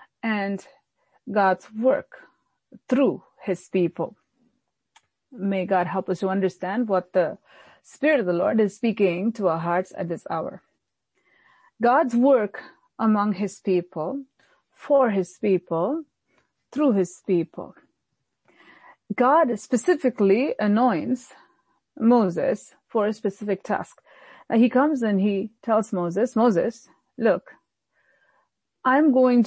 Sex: female